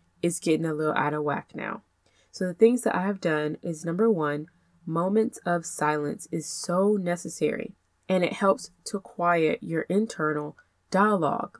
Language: English